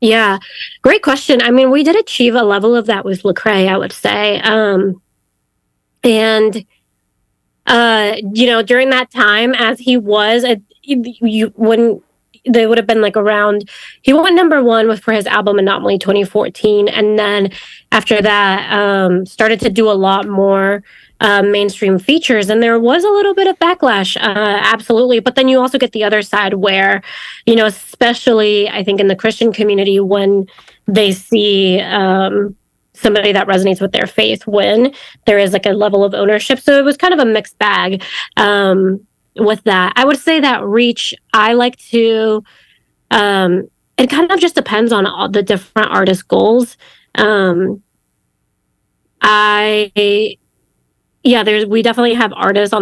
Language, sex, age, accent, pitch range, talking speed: English, female, 20-39, American, 200-235 Hz, 165 wpm